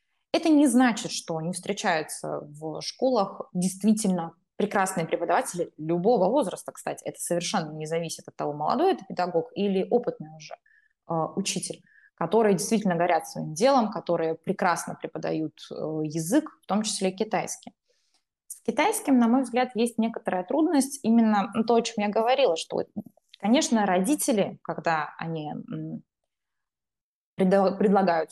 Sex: female